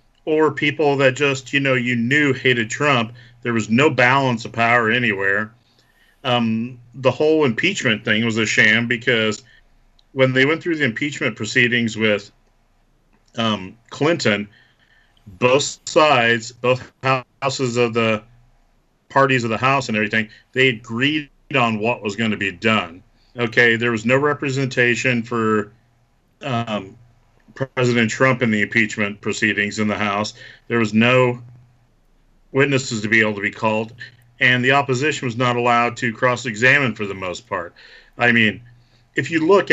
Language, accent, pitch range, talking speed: English, American, 110-130 Hz, 150 wpm